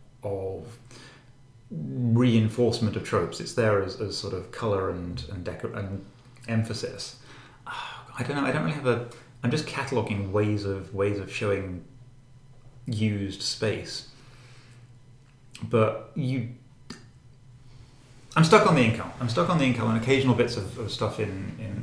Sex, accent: male, British